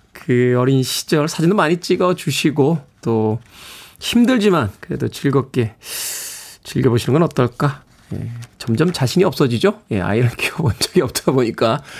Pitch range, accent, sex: 125-205 Hz, native, male